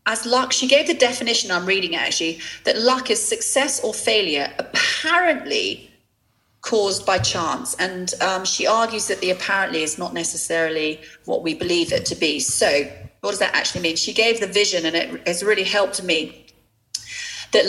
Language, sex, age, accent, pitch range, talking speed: English, female, 30-49, British, 175-230 Hz, 180 wpm